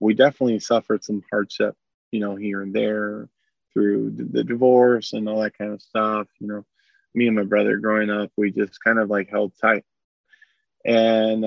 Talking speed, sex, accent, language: 185 wpm, male, American, English